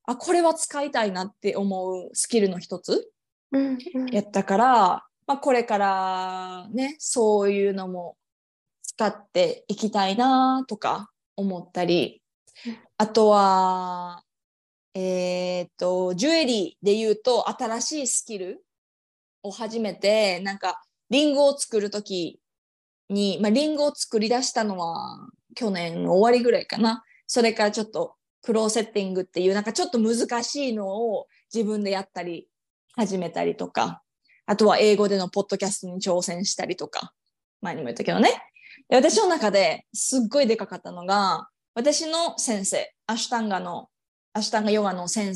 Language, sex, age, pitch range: Japanese, female, 20-39, 195-250 Hz